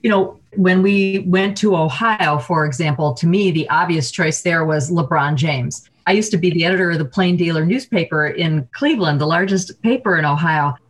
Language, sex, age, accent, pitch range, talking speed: English, female, 40-59, American, 155-190 Hz, 200 wpm